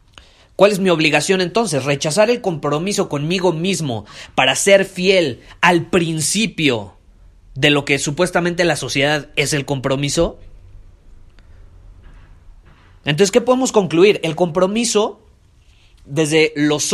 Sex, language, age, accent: male, Spanish, 30-49, Mexican